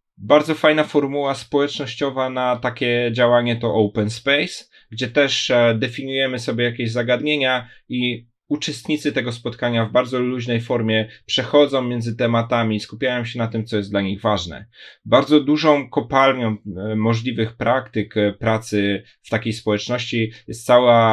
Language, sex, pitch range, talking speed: Polish, male, 110-130 Hz, 135 wpm